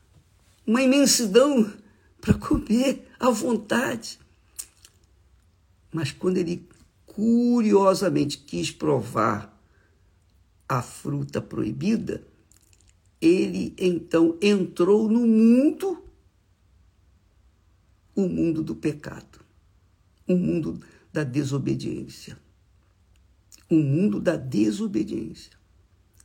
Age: 50-69